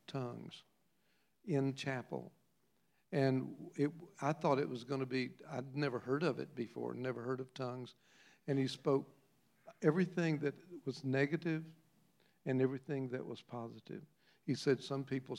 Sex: male